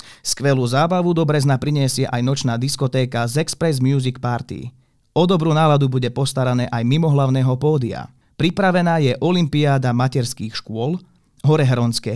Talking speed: 135 wpm